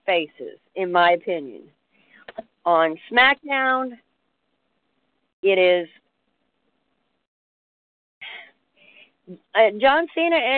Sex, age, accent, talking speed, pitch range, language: female, 50-69, American, 55 wpm, 180-270 Hz, English